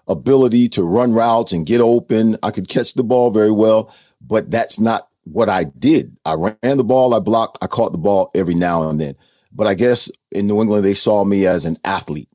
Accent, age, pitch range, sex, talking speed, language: American, 50-69, 90-110 Hz, male, 225 wpm, English